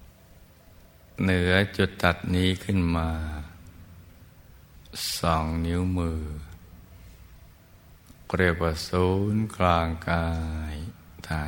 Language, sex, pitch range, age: Thai, male, 80-90 Hz, 60-79